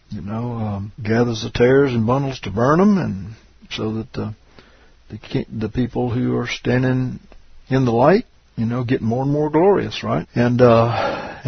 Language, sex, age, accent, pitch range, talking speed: English, male, 60-79, American, 110-130 Hz, 180 wpm